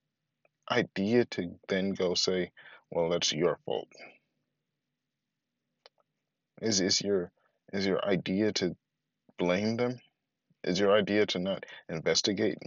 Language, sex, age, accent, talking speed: English, male, 20-39, American, 115 wpm